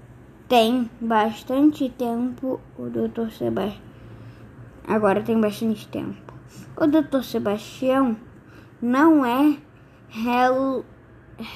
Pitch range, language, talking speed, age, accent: 220-260 Hz, Portuguese, 85 wpm, 10-29, Brazilian